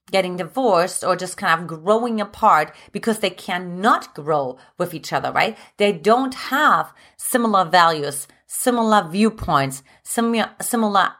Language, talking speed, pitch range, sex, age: English, 130 wpm, 175-235 Hz, female, 30-49